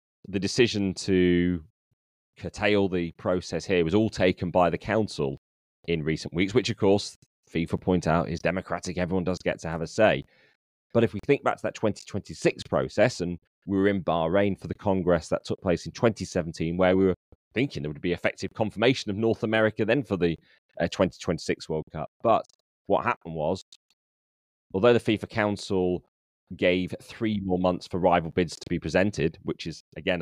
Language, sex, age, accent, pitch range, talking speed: English, male, 30-49, British, 85-105 Hz, 185 wpm